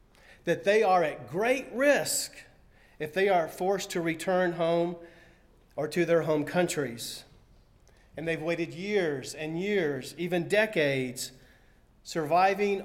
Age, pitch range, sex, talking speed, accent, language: 40-59, 145-180 Hz, male, 125 wpm, American, English